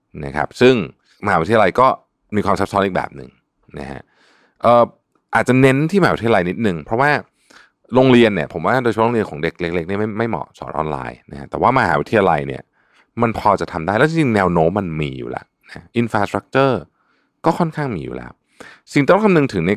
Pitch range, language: 80-120 Hz, Thai